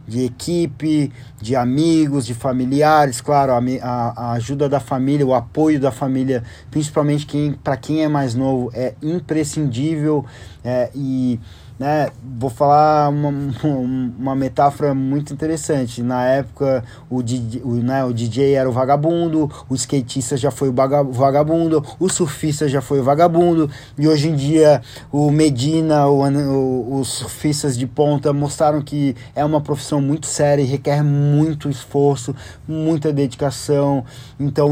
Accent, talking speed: Brazilian, 145 wpm